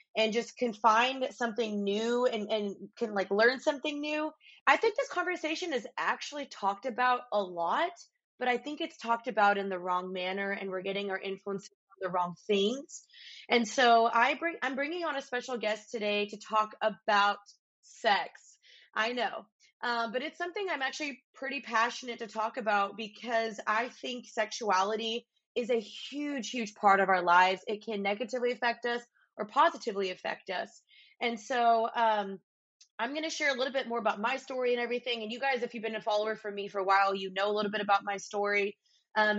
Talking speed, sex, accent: 195 wpm, female, American